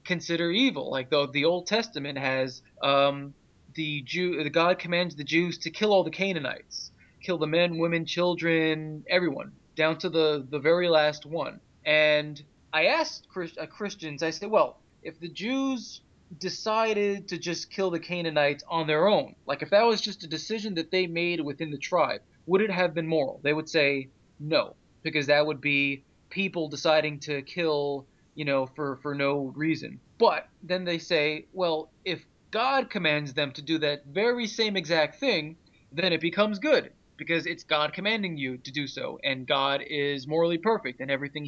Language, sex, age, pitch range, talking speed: English, male, 20-39, 145-180 Hz, 180 wpm